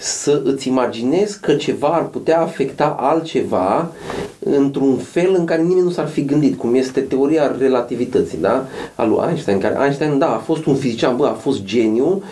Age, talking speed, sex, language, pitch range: 40-59, 180 wpm, male, Romanian, 135-190 Hz